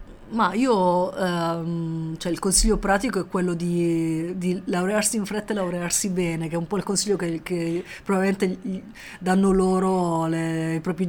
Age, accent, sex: 30-49, native, female